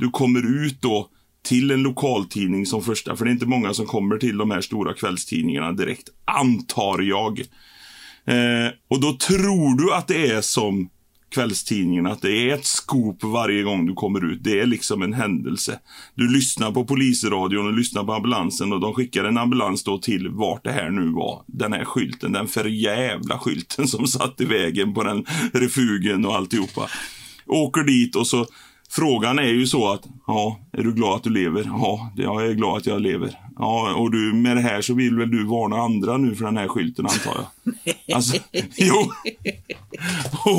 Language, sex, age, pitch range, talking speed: Swedish, male, 30-49, 110-130 Hz, 190 wpm